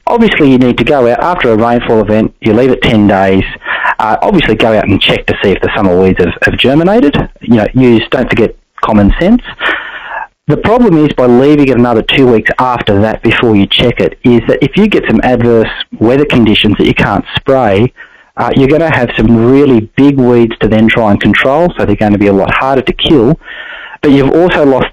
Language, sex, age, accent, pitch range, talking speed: English, male, 30-49, Australian, 105-130 Hz, 225 wpm